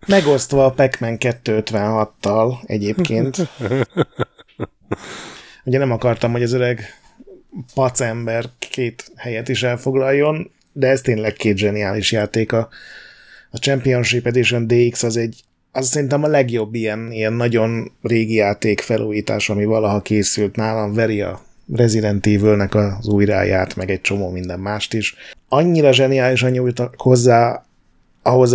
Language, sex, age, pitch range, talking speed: Hungarian, male, 30-49, 105-130 Hz, 125 wpm